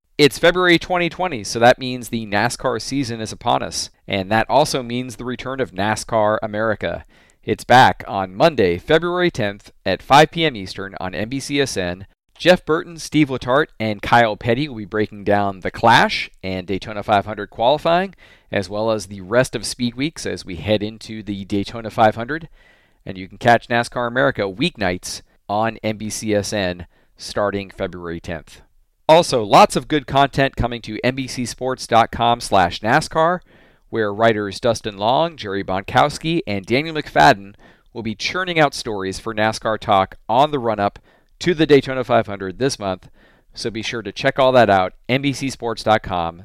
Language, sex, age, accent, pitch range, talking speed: English, male, 40-59, American, 100-140 Hz, 155 wpm